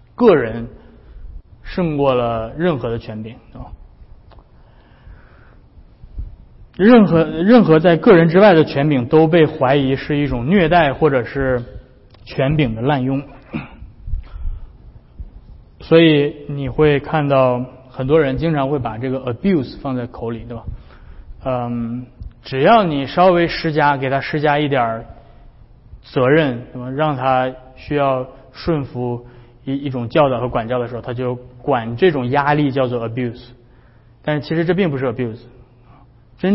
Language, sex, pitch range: Chinese, male, 120-150 Hz